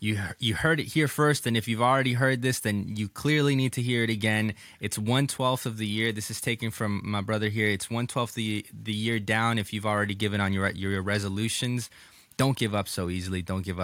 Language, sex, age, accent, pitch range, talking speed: English, male, 20-39, American, 95-120 Hz, 245 wpm